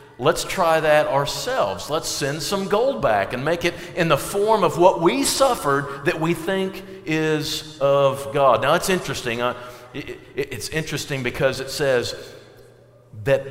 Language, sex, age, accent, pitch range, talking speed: English, male, 50-69, American, 125-165 Hz, 155 wpm